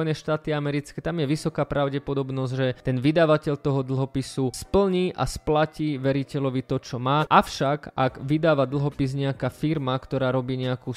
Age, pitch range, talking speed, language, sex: 20-39, 135-155 Hz, 150 wpm, Slovak, male